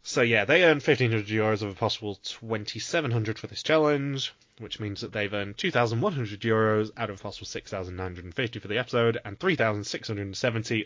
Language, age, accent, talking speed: English, 20-39, British, 165 wpm